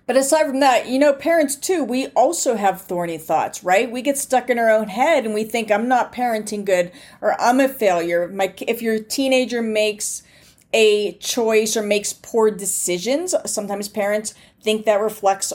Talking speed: 185 wpm